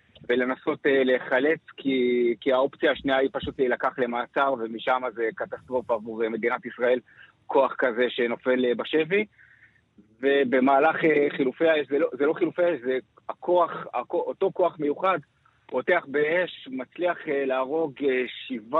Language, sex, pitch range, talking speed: Hebrew, male, 125-160 Hz, 125 wpm